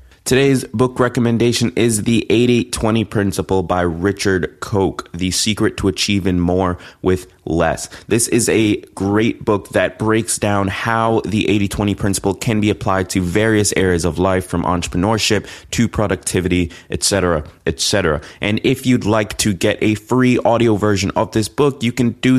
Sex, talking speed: male, 160 wpm